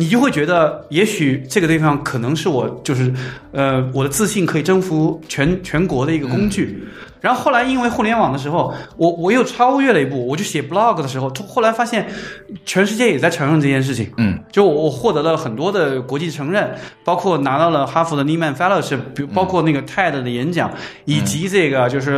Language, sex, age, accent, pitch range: Chinese, male, 20-39, native, 135-195 Hz